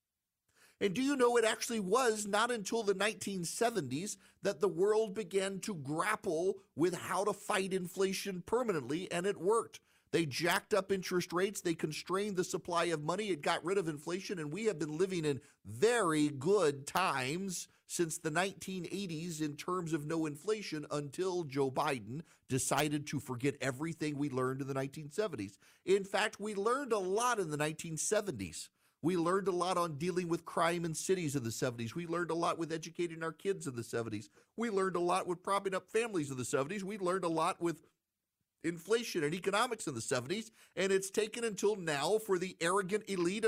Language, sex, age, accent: English, male, 40-59, American